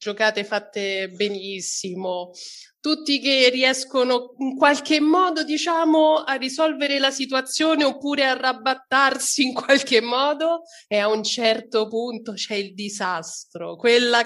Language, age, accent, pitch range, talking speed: Italian, 30-49, native, 195-260 Hz, 120 wpm